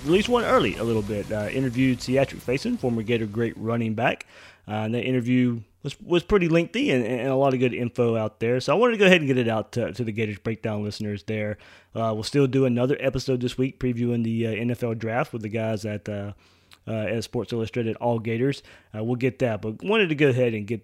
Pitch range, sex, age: 110-130 Hz, male, 20-39